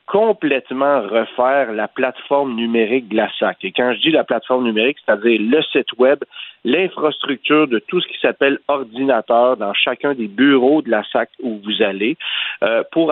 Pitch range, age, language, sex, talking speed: 115-145 Hz, 50-69, French, male, 175 wpm